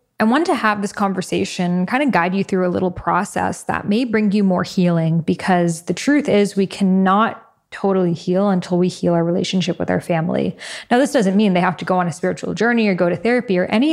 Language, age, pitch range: English, 10-29, 180-205 Hz